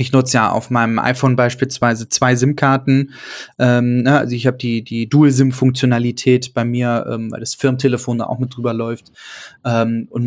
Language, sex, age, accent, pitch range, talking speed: German, male, 20-39, German, 125-150 Hz, 165 wpm